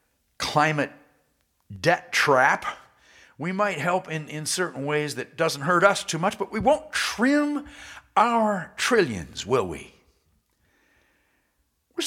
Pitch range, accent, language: 135-195 Hz, American, English